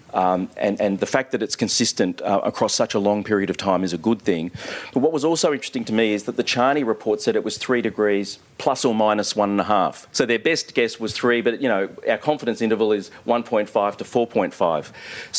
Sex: male